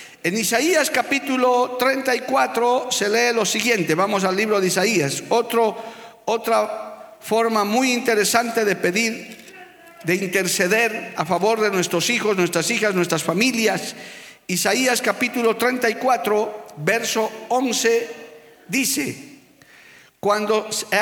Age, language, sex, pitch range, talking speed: 50-69, Spanish, male, 195-240 Hz, 110 wpm